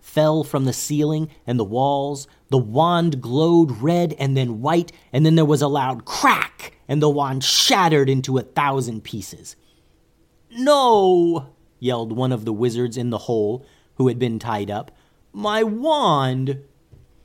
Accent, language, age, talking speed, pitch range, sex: American, English, 30-49, 155 wpm, 105-150 Hz, male